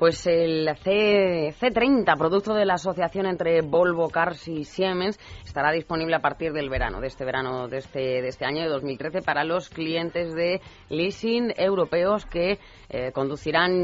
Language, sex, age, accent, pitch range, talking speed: Spanish, female, 30-49, Spanish, 150-180 Hz, 165 wpm